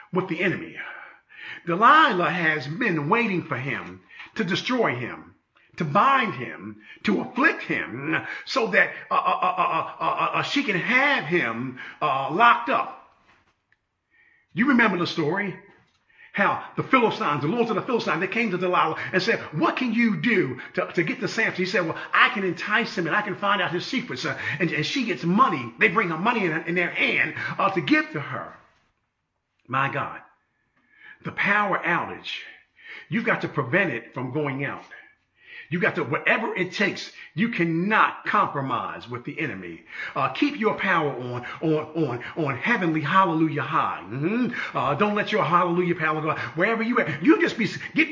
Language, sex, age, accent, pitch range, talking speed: English, male, 40-59, American, 160-230 Hz, 180 wpm